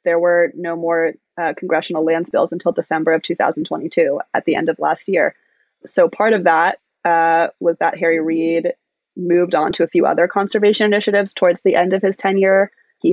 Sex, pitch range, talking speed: female, 165-200 Hz, 190 wpm